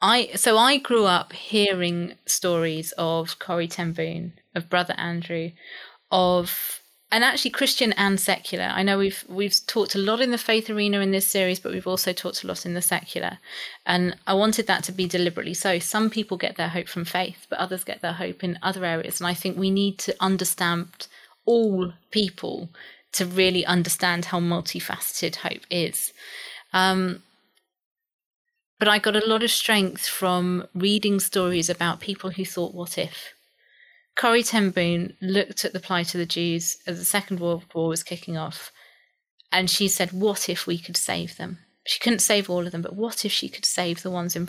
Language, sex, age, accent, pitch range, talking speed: English, female, 20-39, British, 175-210 Hz, 190 wpm